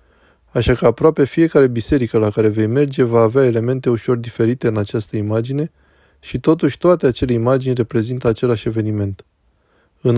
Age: 20-39